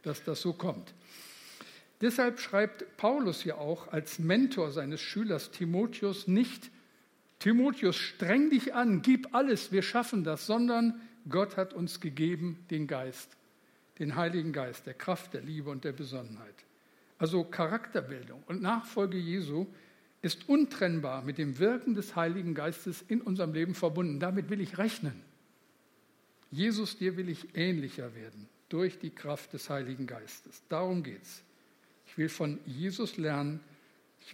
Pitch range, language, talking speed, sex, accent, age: 155-205 Hz, German, 145 wpm, male, German, 60-79